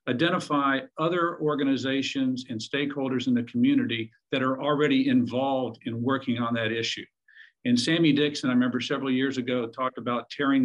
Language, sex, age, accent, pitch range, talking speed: English, male, 50-69, American, 125-155 Hz, 160 wpm